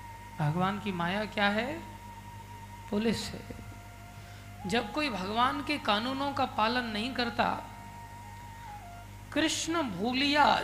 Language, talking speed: Hindi, 100 wpm